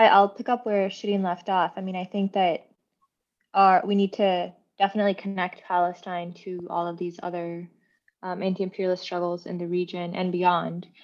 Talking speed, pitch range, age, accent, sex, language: 170 wpm, 175-200 Hz, 20-39, American, female, English